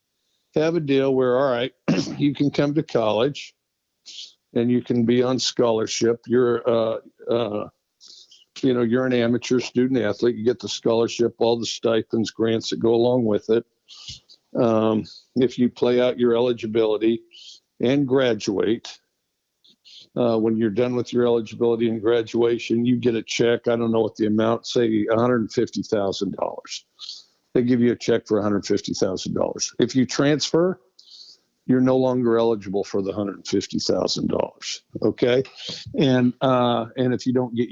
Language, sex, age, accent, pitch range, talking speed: English, male, 60-79, American, 115-125 Hz, 160 wpm